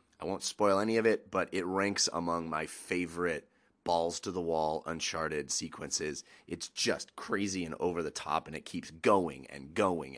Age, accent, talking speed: 30-49, American, 155 wpm